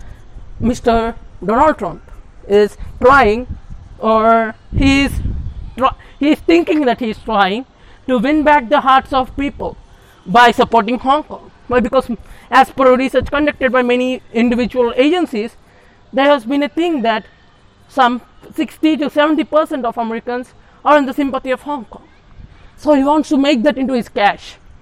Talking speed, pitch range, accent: 155 wpm, 220-270 Hz, Indian